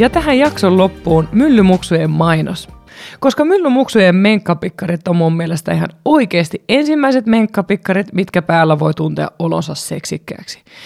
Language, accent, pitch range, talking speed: Finnish, native, 165-230 Hz, 120 wpm